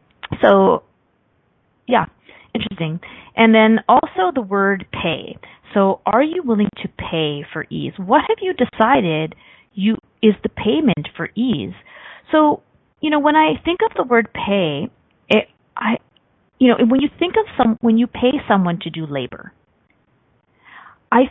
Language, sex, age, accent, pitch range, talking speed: English, female, 30-49, American, 165-240 Hz, 150 wpm